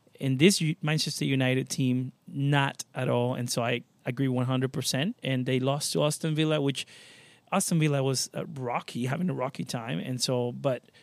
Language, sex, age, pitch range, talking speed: English, male, 30-49, 125-145 Hz, 175 wpm